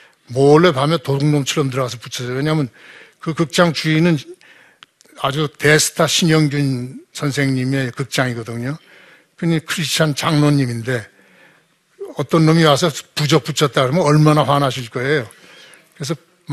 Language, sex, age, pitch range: Korean, male, 60-79, 130-165 Hz